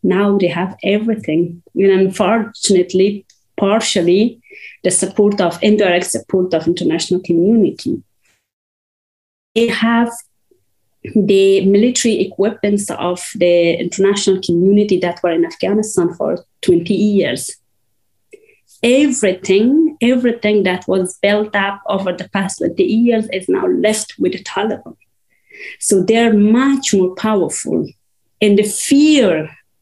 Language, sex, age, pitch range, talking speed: German, female, 30-49, 185-235 Hz, 115 wpm